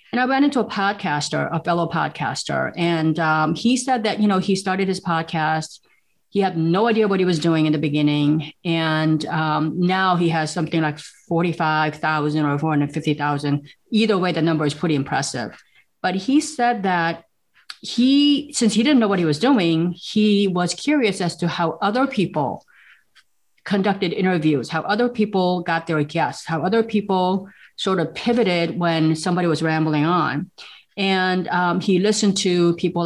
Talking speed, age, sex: 170 wpm, 30-49, female